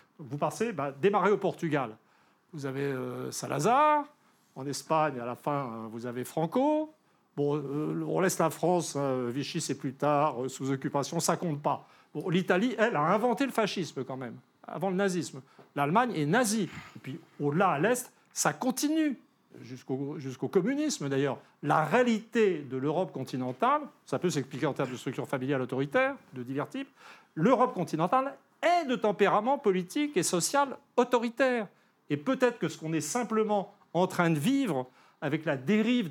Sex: male